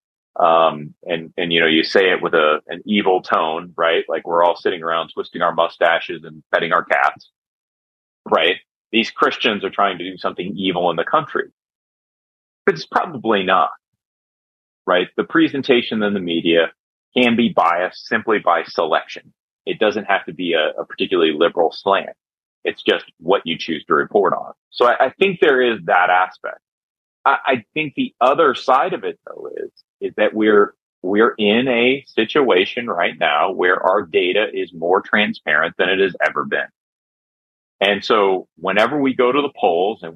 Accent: American